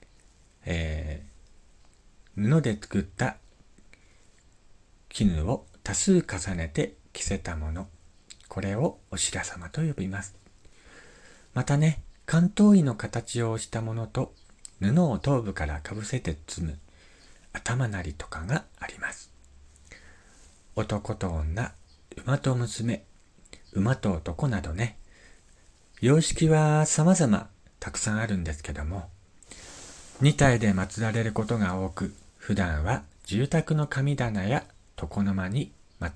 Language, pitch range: Japanese, 85-120 Hz